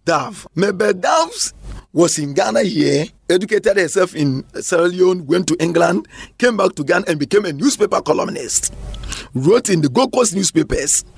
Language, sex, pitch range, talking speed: English, male, 155-240 Hz, 155 wpm